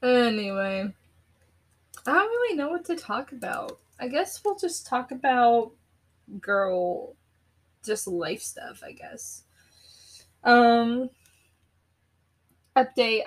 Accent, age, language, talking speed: American, 10-29, English, 105 wpm